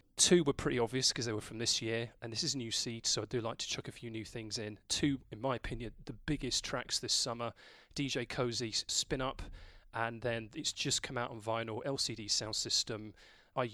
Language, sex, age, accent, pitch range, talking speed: English, male, 30-49, British, 110-145 Hz, 225 wpm